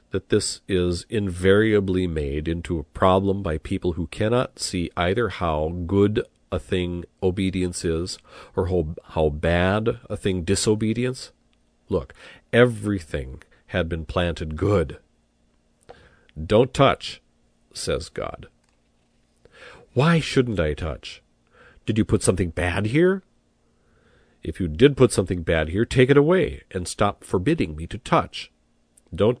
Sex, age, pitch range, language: male, 40-59, 85-105 Hz, English